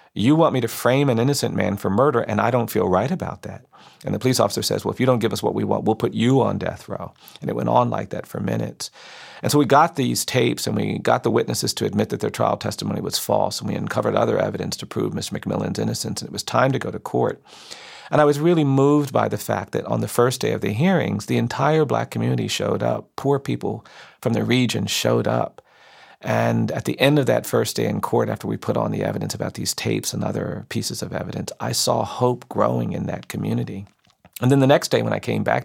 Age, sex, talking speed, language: 40-59, male, 255 wpm, English